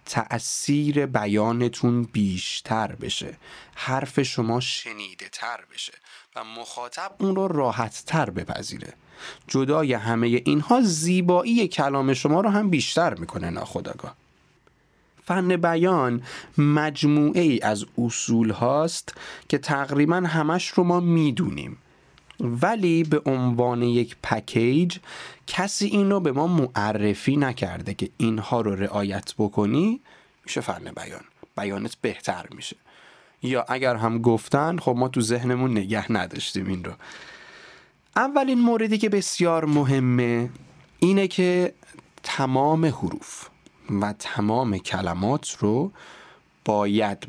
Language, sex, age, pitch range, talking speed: Persian, male, 30-49, 110-170 Hz, 110 wpm